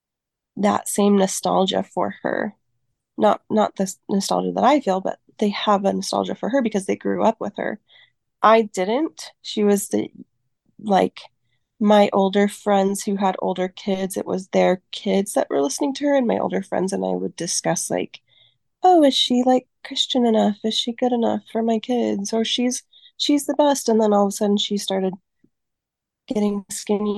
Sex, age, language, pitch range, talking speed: female, 20-39, English, 190-245 Hz, 185 wpm